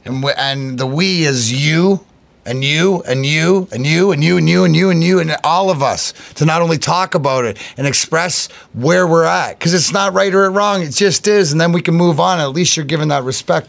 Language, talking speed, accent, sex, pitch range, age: English, 250 wpm, American, male, 140-175 Hz, 30-49